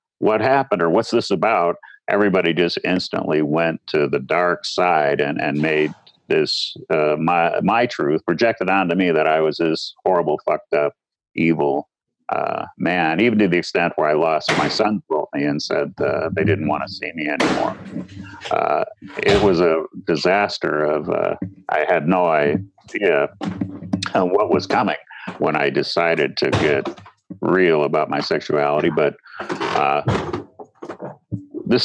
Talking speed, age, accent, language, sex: 155 wpm, 60-79, American, English, male